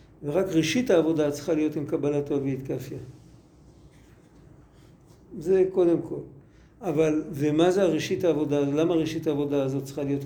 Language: Hebrew